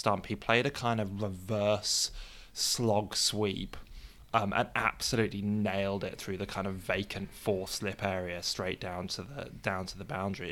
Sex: male